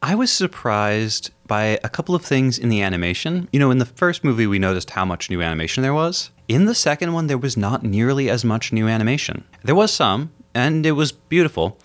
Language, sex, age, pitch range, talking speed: English, male, 30-49, 95-125 Hz, 225 wpm